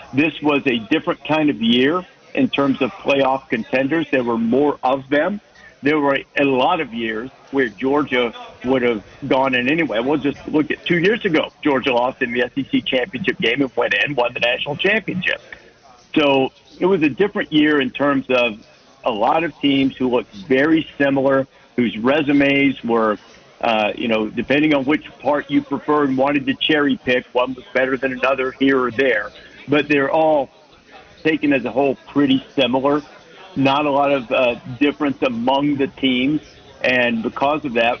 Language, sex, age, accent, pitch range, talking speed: English, male, 60-79, American, 125-145 Hz, 180 wpm